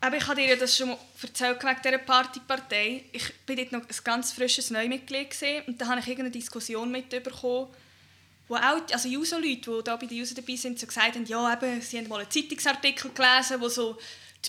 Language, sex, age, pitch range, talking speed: German, female, 10-29, 215-260 Hz, 225 wpm